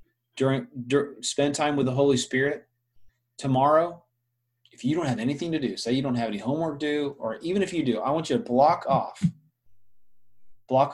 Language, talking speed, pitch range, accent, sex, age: English, 190 wpm, 120-150 Hz, American, male, 30-49